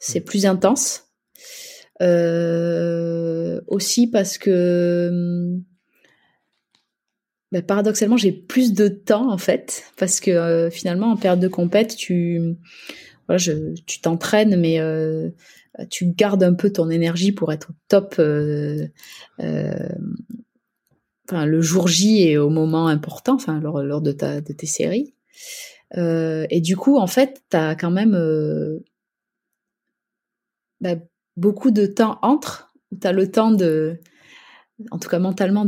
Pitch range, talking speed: 160-200 Hz, 140 wpm